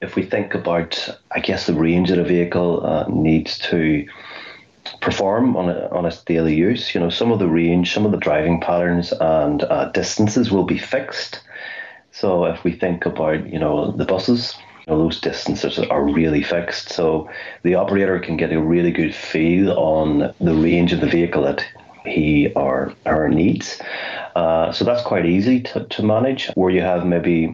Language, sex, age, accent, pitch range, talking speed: English, male, 30-49, Irish, 80-90 Hz, 185 wpm